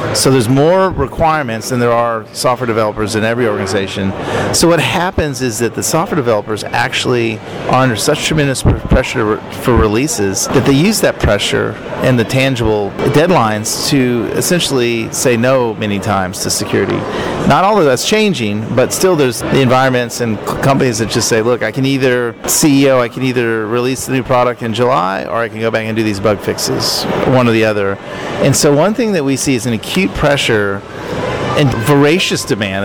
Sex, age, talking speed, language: male, 40-59, 190 wpm, English